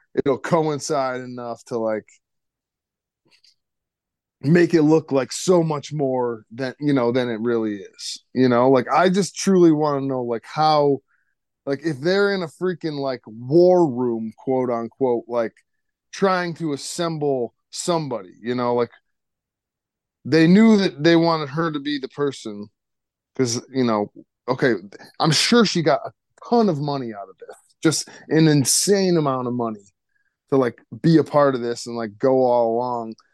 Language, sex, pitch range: English, male, 120-160 Hz